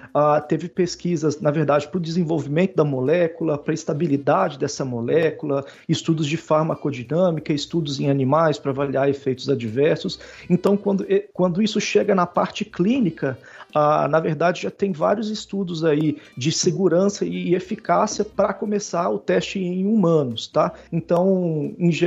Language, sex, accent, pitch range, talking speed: Portuguese, male, Brazilian, 150-190 Hz, 145 wpm